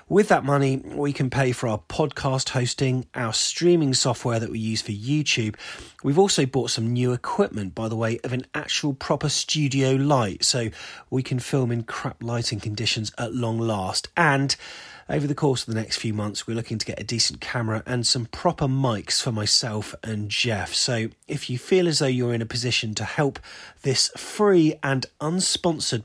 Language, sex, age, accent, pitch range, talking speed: English, male, 30-49, British, 110-145 Hz, 195 wpm